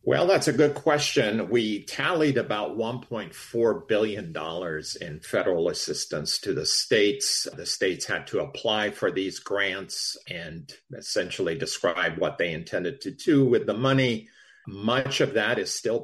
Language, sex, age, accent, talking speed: English, male, 50-69, American, 150 wpm